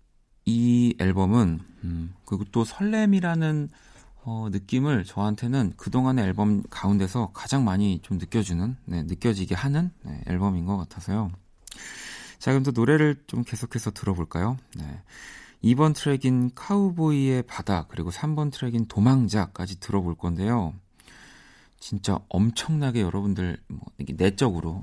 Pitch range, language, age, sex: 90-125 Hz, Korean, 40-59, male